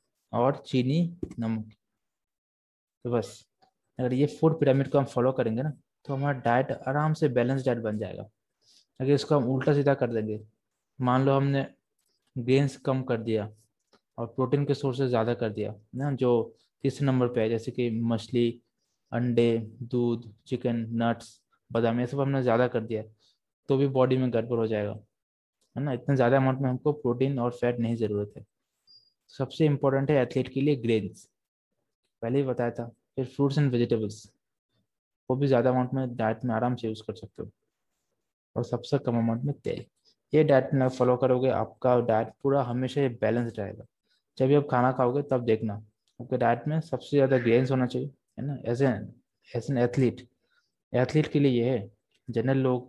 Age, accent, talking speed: 20-39, native, 175 wpm